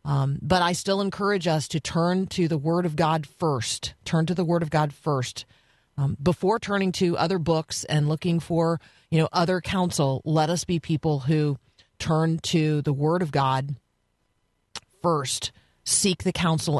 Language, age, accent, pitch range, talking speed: English, 40-59, American, 140-165 Hz, 175 wpm